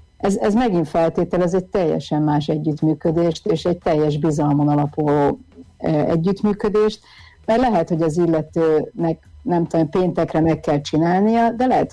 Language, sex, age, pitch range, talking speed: Hungarian, female, 50-69, 155-185 Hz, 140 wpm